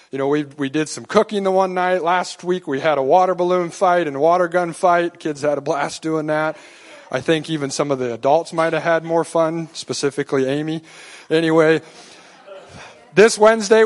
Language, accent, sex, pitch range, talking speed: English, American, male, 150-185 Hz, 200 wpm